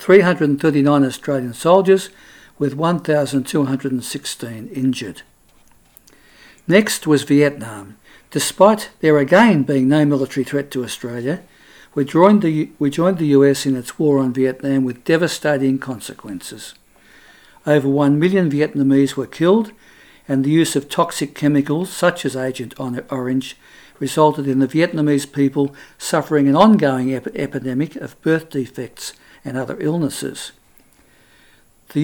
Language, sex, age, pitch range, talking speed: English, male, 60-79, 135-160 Hz, 120 wpm